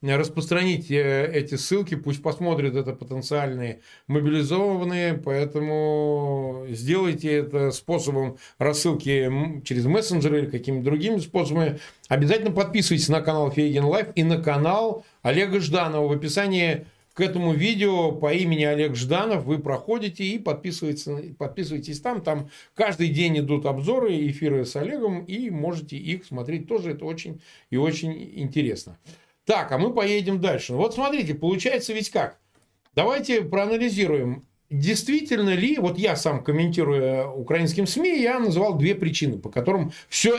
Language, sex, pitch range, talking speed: Russian, male, 145-195 Hz, 135 wpm